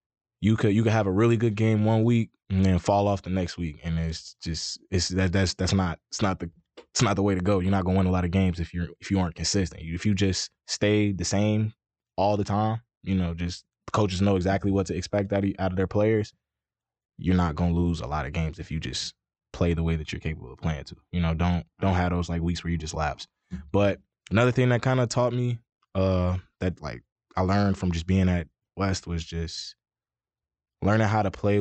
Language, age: English, 20-39